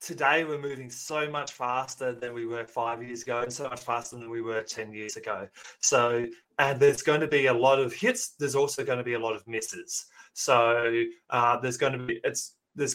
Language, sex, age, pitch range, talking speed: English, male, 20-39, 120-155 Hz, 220 wpm